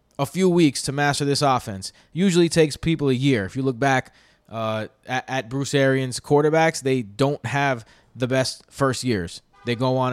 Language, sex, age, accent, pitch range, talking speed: English, male, 20-39, American, 125-160 Hz, 190 wpm